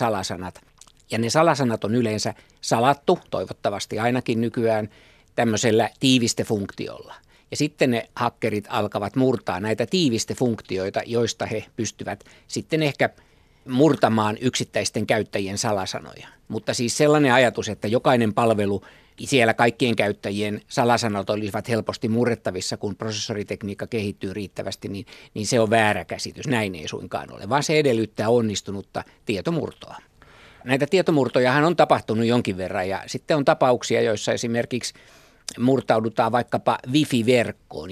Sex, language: male, Finnish